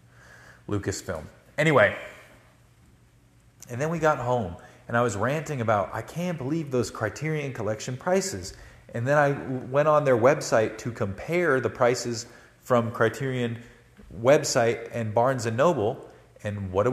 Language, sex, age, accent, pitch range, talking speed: English, male, 30-49, American, 105-130 Hz, 145 wpm